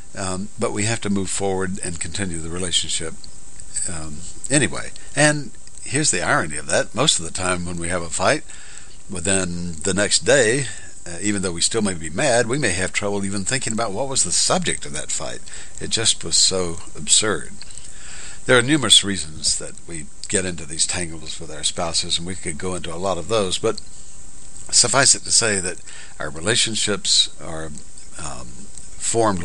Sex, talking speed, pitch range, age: male, 185 wpm, 80-100 Hz, 60-79